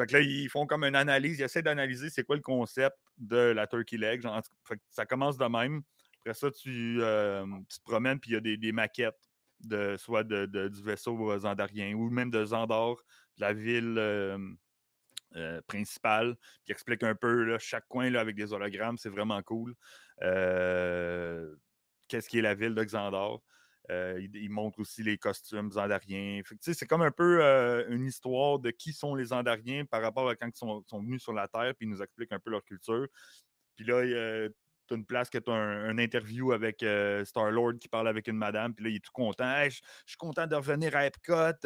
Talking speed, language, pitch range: 215 wpm, French, 105-140 Hz